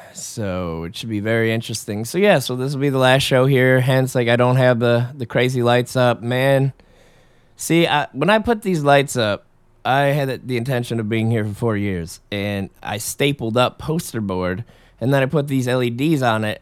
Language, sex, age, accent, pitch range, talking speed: English, male, 20-39, American, 115-145 Hz, 215 wpm